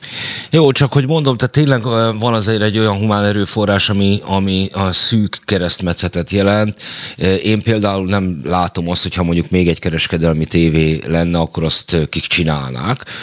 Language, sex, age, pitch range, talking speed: Hungarian, male, 30-49, 80-105 Hz, 155 wpm